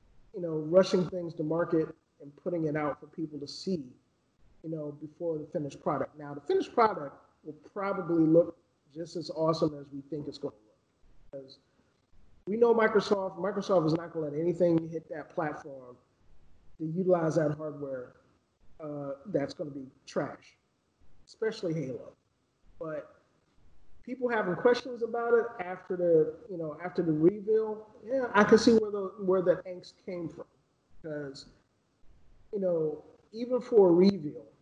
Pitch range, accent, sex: 150-185 Hz, American, male